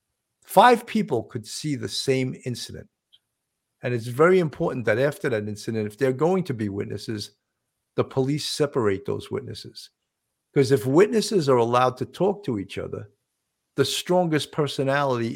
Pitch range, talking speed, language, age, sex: 120-170 Hz, 150 wpm, English, 50-69, male